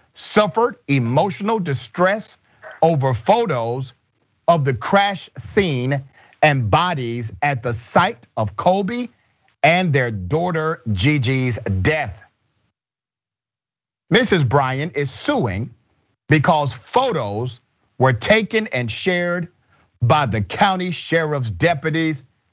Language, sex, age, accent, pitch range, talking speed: English, male, 50-69, American, 120-170 Hz, 95 wpm